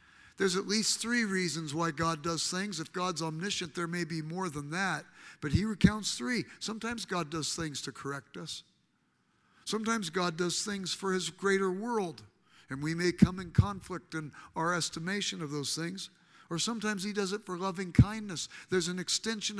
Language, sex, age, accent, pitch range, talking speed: English, male, 60-79, American, 165-200 Hz, 185 wpm